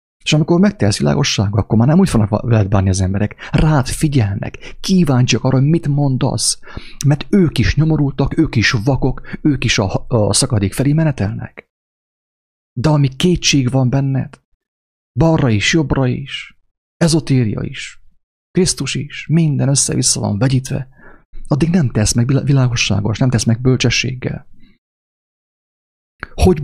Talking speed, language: 135 wpm, English